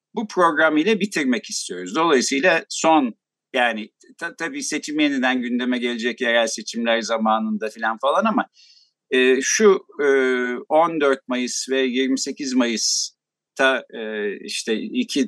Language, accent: Turkish, native